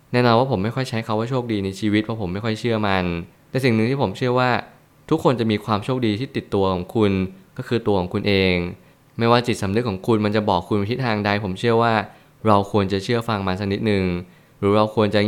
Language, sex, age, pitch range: Thai, male, 20-39, 100-120 Hz